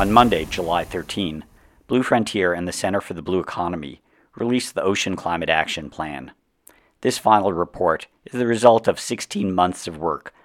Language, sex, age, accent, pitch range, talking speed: English, male, 50-69, American, 85-100 Hz, 170 wpm